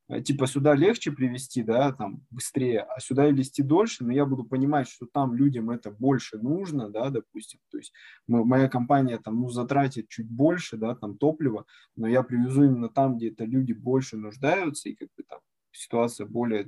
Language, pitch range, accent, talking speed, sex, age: Russian, 115-140 Hz, native, 190 wpm, male, 20-39